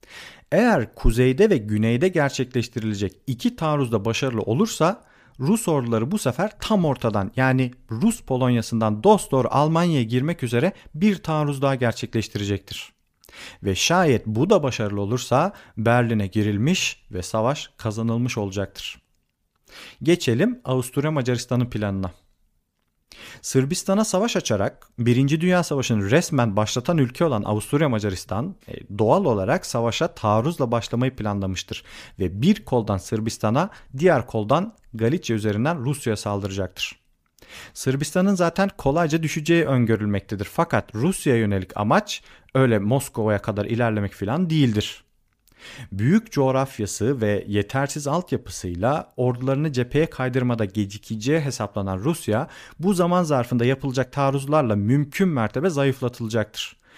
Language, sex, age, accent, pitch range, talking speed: Turkish, male, 40-59, native, 110-150 Hz, 110 wpm